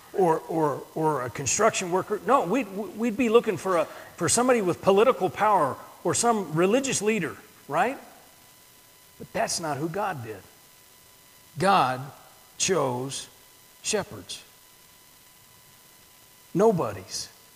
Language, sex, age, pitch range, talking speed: English, male, 50-69, 165-225 Hz, 120 wpm